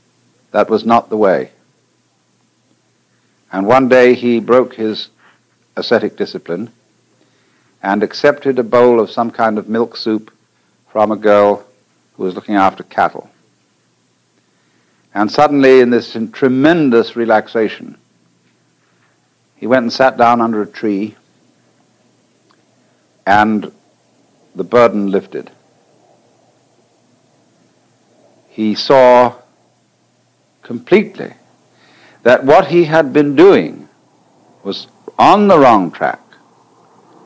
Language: English